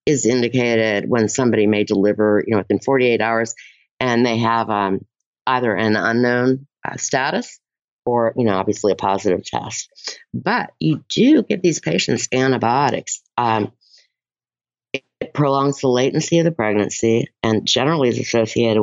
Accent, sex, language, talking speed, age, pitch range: American, female, English, 145 wpm, 50-69, 105-125 Hz